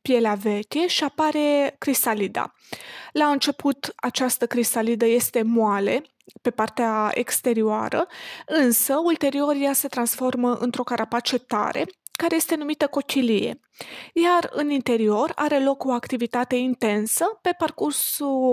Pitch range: 235-295 Hz